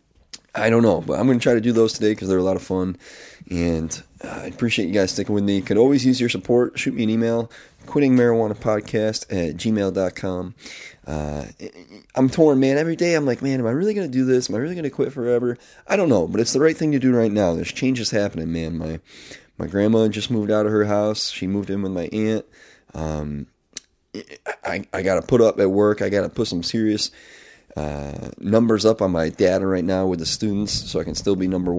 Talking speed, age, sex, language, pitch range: 240 wpm, 30-49, male, English, 95-120 Hz